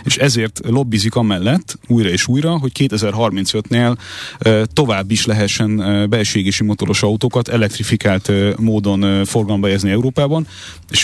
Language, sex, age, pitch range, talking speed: Hungarian, male, 30-49, 100-115 Hz, 110 wpm